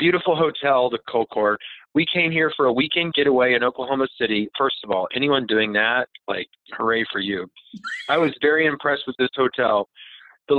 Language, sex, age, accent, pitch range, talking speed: English, male, 40-59, American, 125-150 Hz, 180 wpm